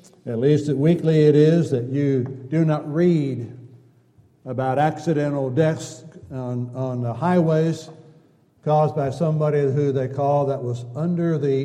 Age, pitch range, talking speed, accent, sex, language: 60-79, 125-150 Hz, 140 wpm, American, male, English